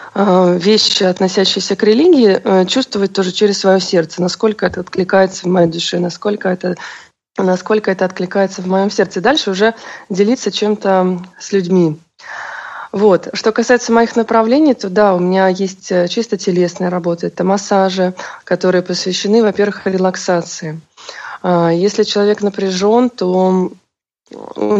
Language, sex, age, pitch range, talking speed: Russian, female, 20-39, 180-210 Hz, 130 wpm